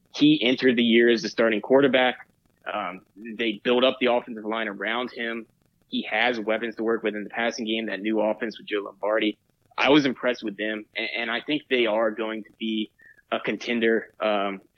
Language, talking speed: English, 205 wpm